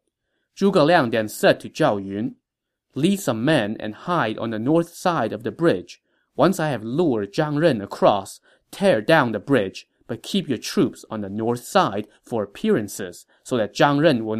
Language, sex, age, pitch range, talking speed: English, male, 20-39, 110-165 Hz, 190 wpm